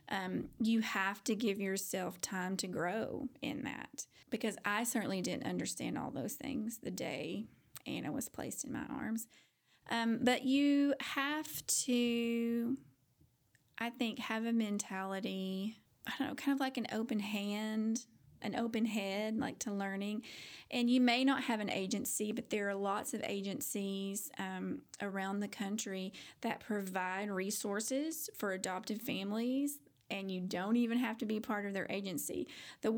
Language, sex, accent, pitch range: English, female, American, 200-240 Hz